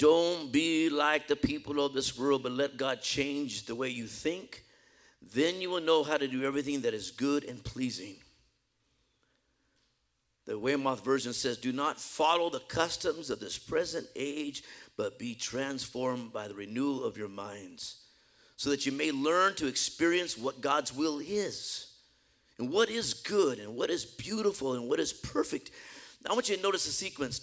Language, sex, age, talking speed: English, male, 50-69, 175 wpm